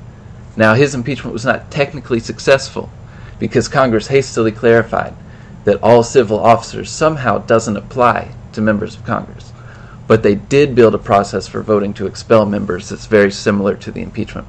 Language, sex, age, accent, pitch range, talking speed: English, male, 30-49, American, 105-120 Hz, 160 wpm